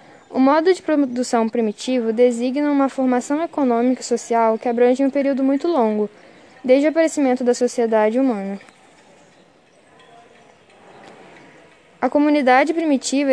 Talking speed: 115 wpm